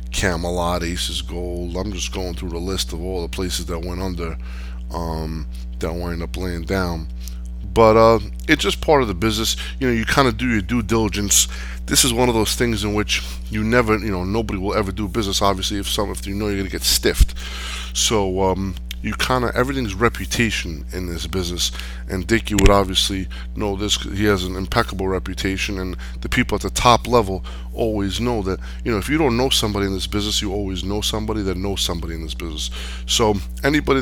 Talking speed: 210 wpm